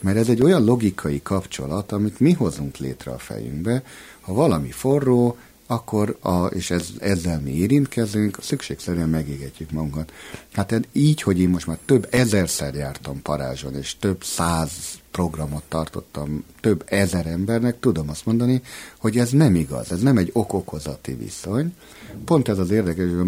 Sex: male